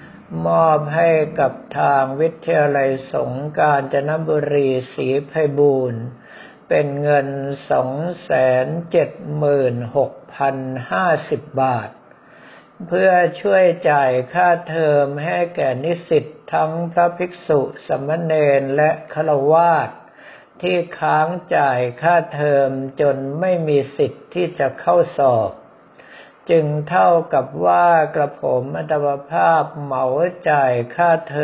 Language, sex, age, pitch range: Thai, male, 60-79, 135-165 Hz